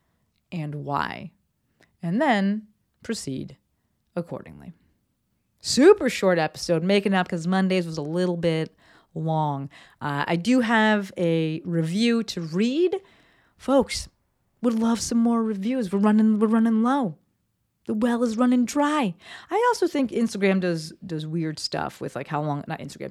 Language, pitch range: English, 160-240 Hz